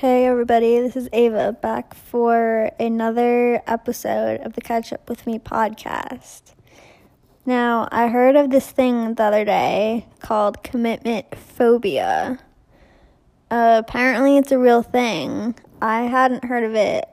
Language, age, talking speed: English, 20-39, 135 wpm